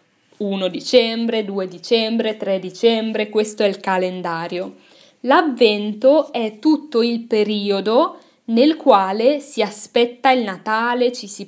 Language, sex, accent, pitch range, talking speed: Italian, female, native, 195-250 Hz, 120 wpm